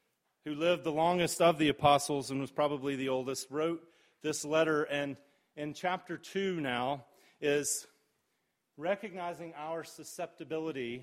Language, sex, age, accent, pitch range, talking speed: English, male, 30-49, American, 145-175 Hz, 130 wpm